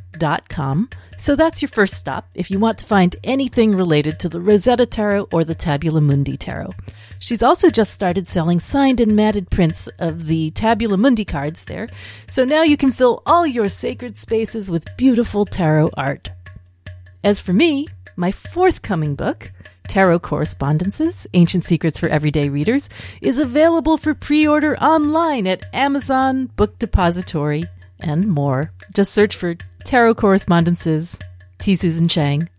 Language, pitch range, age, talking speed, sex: English, 150-245 Hz, 40-59, 155 wpm, female